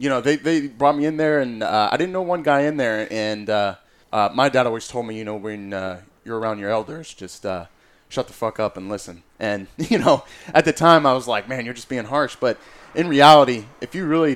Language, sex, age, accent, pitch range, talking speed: English, male, 20-39, American, 100-120 Hz, 255 wpm